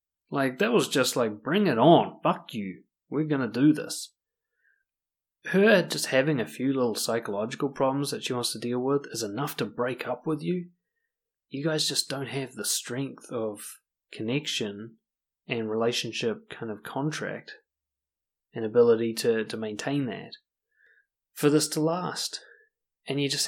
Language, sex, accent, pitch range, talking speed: English, male, Australian, 115-145 Hz, 160 wpm